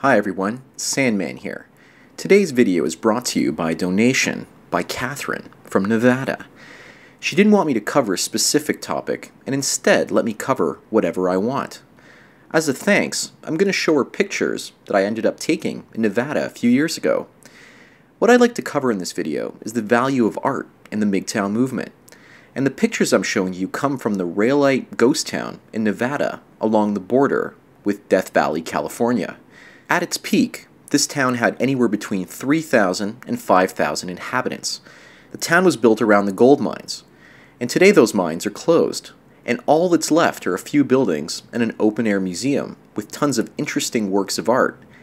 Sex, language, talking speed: male, English, 185 wpm